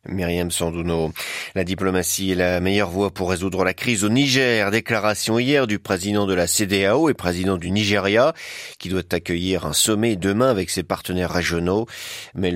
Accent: French